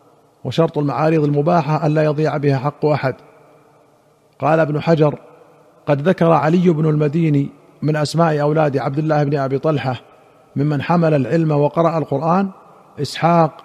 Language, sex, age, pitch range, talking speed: Arabic, male, 50-69, 140-160 Hz, 135 wpm